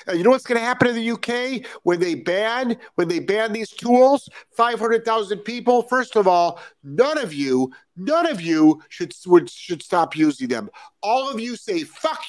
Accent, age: American, 50-69